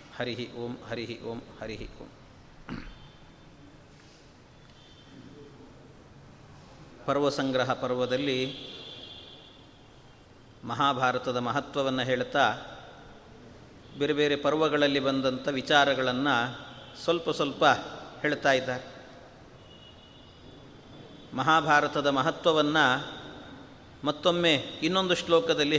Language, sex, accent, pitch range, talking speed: Kannada, male, native, 135-175 Hz, 60 wpm